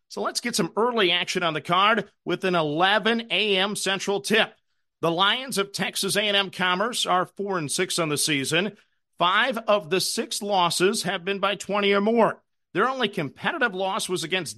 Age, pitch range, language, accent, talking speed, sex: 50-69, 175-210 Hz, English, American, 185 wpm, male